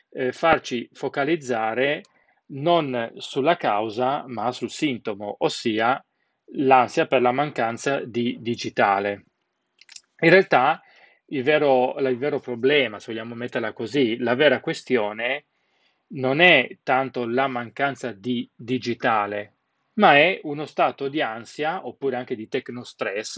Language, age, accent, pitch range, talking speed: Italian, 30-49, native, 120-155 Hz, 115 wpm